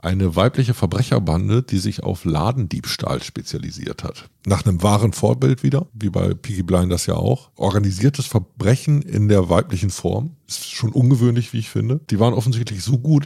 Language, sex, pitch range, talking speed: German, male, 90-120 Hz, 175 wpm